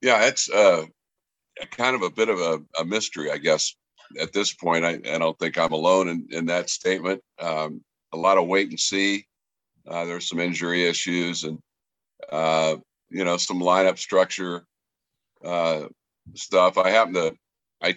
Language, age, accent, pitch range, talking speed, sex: English, 60-79, American, 85-95 Hz, 170 wpm, male